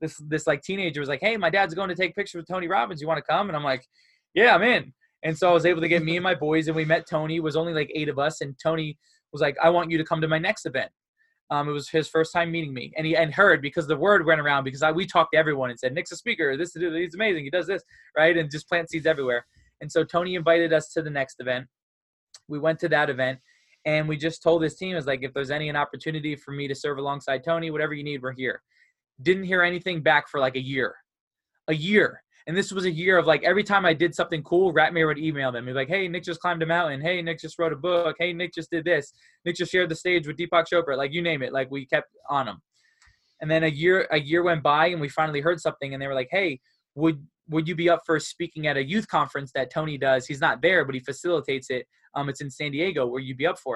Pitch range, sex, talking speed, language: 145-175 Hz, male, 280 wpm, English